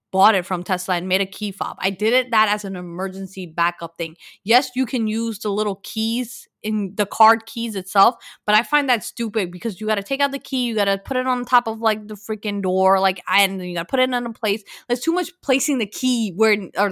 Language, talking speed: English, 260 wpm